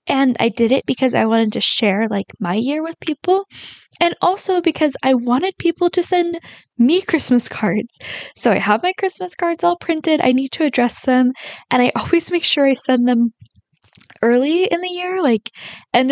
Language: English